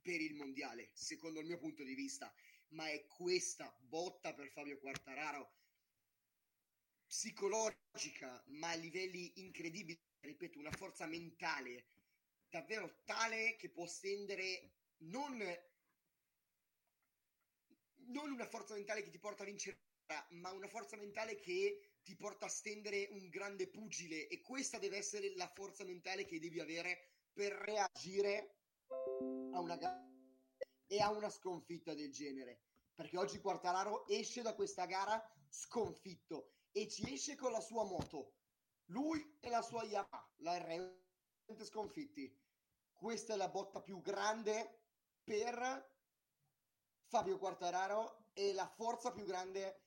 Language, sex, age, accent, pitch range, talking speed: Italian, male, 30-49, native, 175-220 Hz, 130 wpm